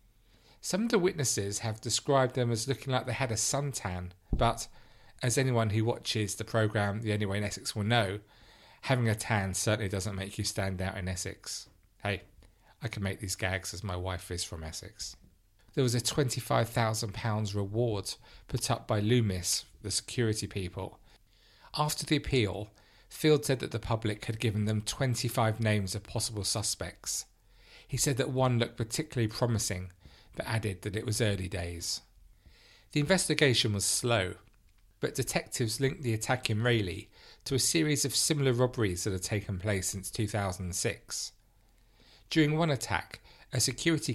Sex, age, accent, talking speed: male, 40-59, British, 165 wpm